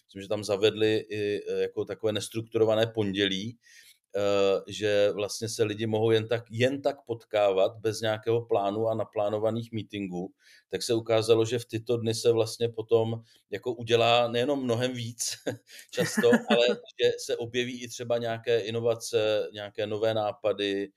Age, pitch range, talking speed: 40-59, 105-120 Hz, 150 wpm